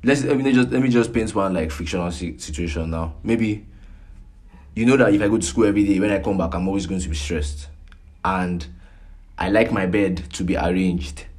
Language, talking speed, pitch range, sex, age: English, 225 wpm, 85-110 Hz, male, 20-39